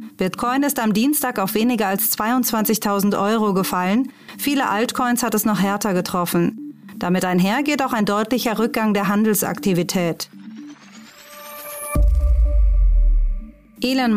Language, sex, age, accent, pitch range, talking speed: German, female, 30-49, German, 195-245 Hz, 110 wpm